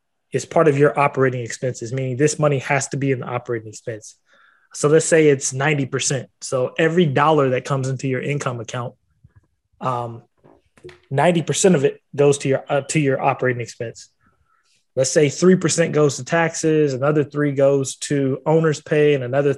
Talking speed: 165 wpm